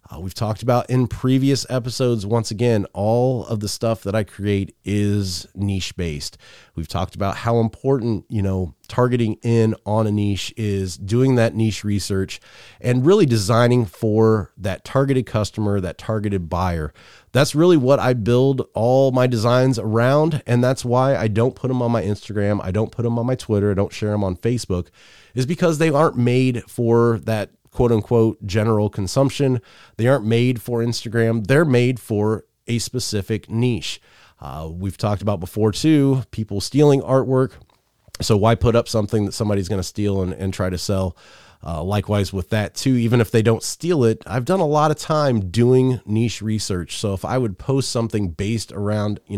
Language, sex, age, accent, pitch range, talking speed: English, male, 30-49, American, 100-125 Hz, 185 wpm